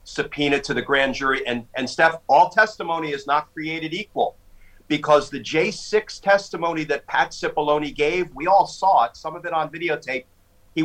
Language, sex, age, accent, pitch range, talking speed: English, male, 40-59, American, 145-185 Hz, 175 wpm